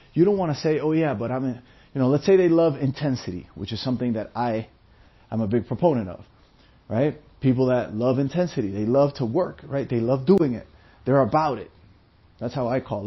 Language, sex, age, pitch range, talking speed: English, male, 30-49, 115-145 Hz, 215 wpm